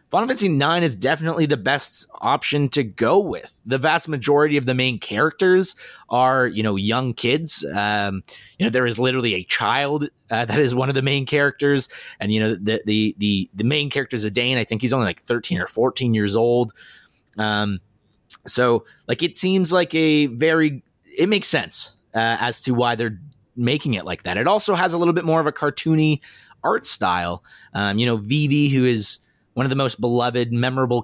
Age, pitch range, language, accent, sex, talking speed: 30-49, 115-145 Hz, English, American, male, 200 wpm